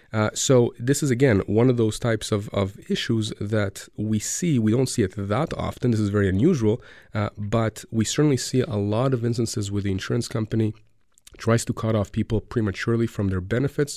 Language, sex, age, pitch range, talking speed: English, male, 30-49, 100-120 Hz, 200 wpm